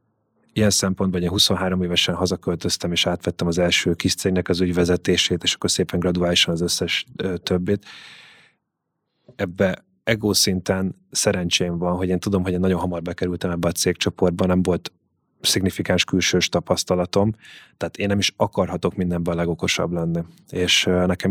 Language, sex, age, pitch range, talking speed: Hungarian, male, 20-39, 90-95 Hz, 150 wpm